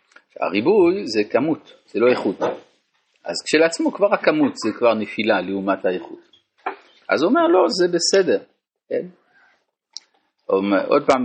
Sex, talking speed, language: male, 135 wpm, Hebrew